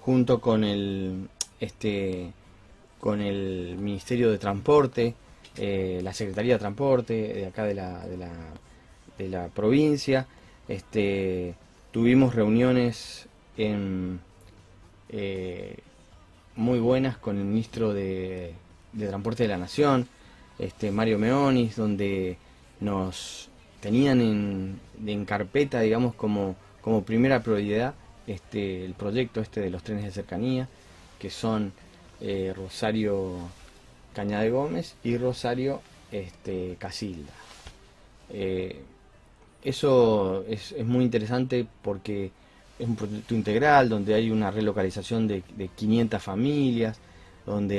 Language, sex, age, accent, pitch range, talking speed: Spanish, male, 20-39, Argentinian, 95-115 Hz, 115 wpm